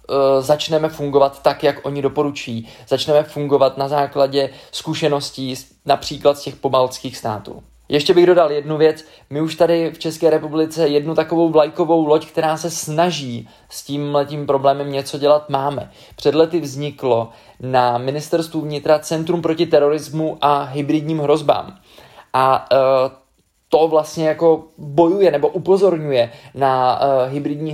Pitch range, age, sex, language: 135-160 Hz, 20-39, male, Czech